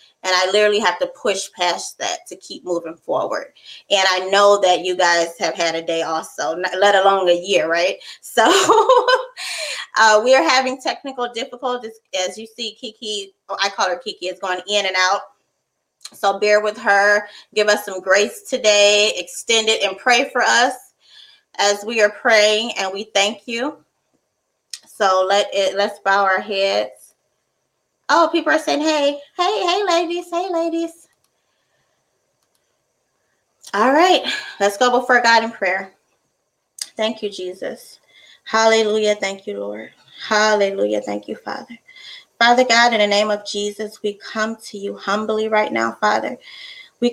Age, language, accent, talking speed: 20-39, English, American, 155 wpm